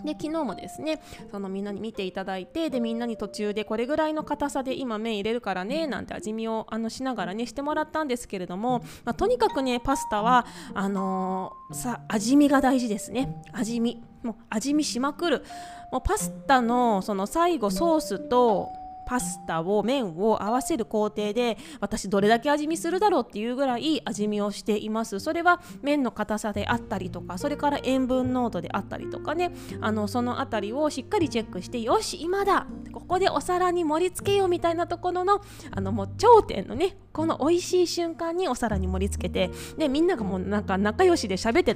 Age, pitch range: 20-39, 210-315 Hz